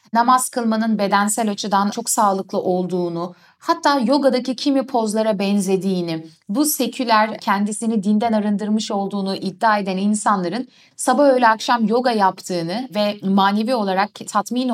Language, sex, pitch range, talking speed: Turkish, female, 195-270 Hz, 120 wpm